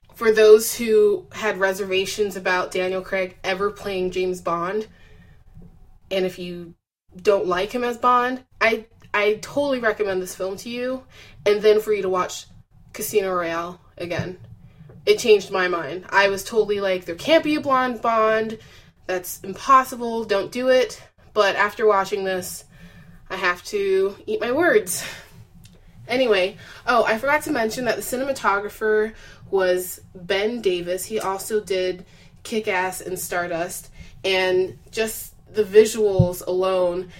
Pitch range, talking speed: 185-235 Hz, 145 wpm